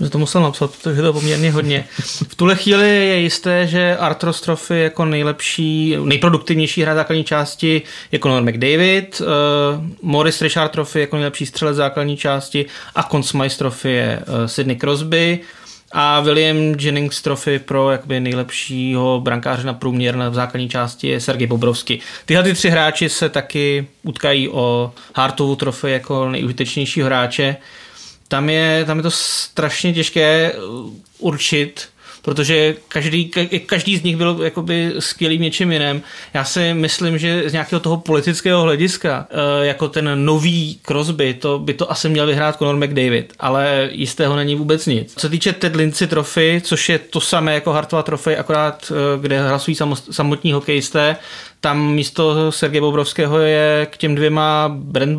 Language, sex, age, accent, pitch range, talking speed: Czech, male, 20-39, native, 140-160 Hz, 150 wpm